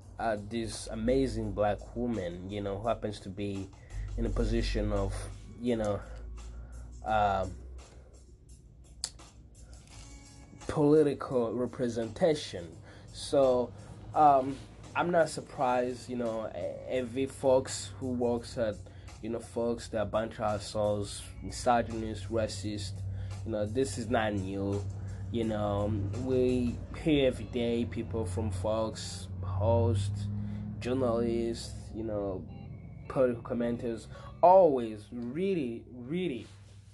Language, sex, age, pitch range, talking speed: English, male, 20-39, 100-120 Hz, 105 wpm